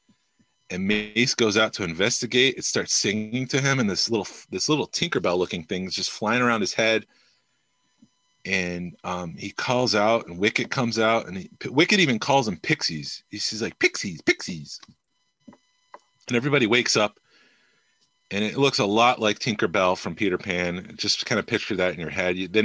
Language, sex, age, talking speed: English, male, 30-49, 185 wpm